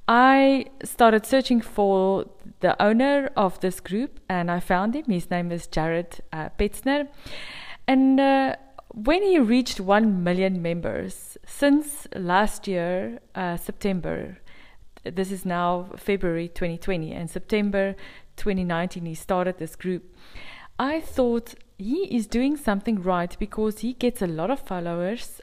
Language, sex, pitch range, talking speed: English, female, 185-240 Hz, 135 wpm